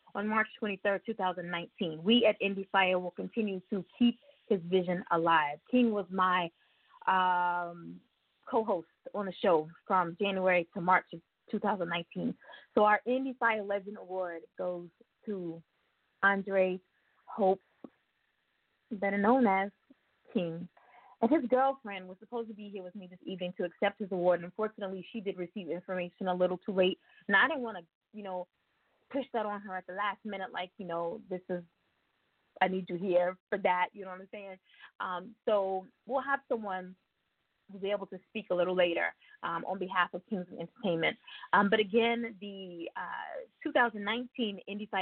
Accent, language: American, English